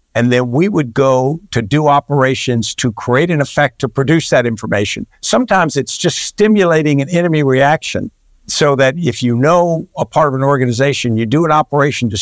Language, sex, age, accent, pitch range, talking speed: English, male, 60-79, American, 120-145 Hz, 185 wpm